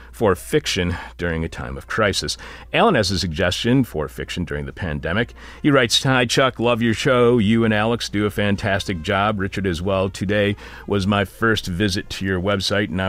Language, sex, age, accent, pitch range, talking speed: English, male, 40-59, American, 85-110 Hz, 195 wpm